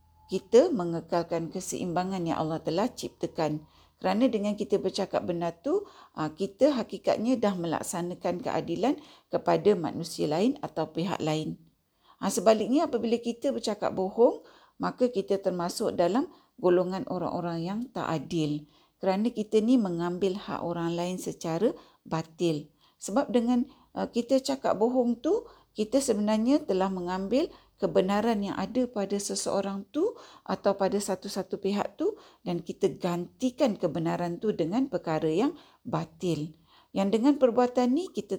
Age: 50-69